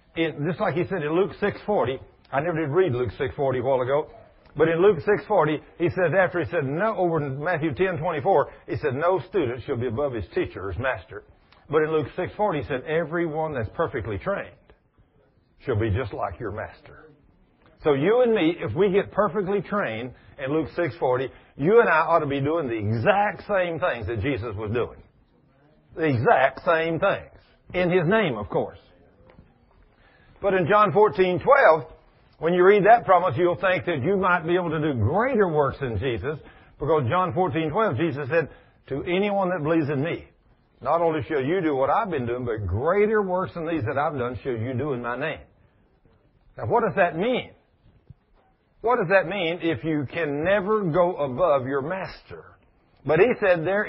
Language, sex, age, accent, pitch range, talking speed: English, male, 50-69, American, 150-190 Hz, 195 wpm